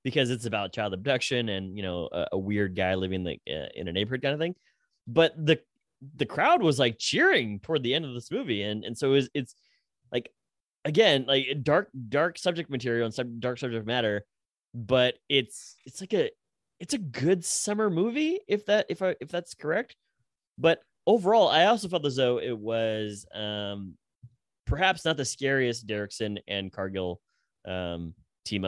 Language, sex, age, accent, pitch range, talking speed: English, male, 20-39, American, 95-135 Hz, 180 wpm